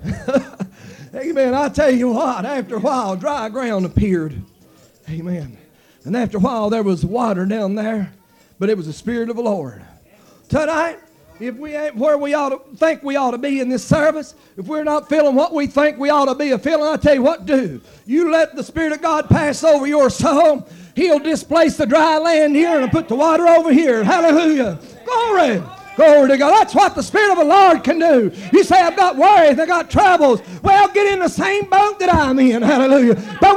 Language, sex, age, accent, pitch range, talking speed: English, male, 40-59, American, 235-340 Hz, 210 wpm